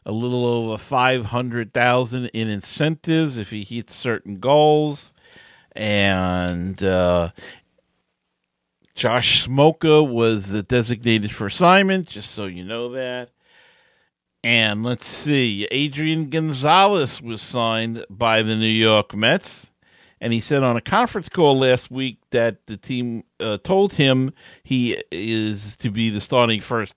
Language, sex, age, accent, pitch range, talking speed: English, male, 50-69, American, 105-130 Hz, 130 wpm